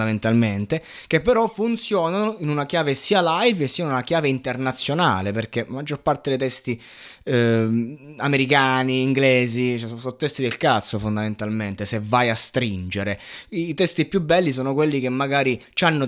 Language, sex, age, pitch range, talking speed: Italian, male, 20-39, 125-170 Hz, 155 wpm